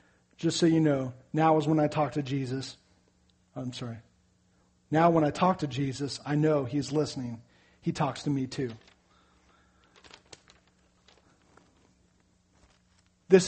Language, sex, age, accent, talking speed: English, male, 40-59, American, 130 wpm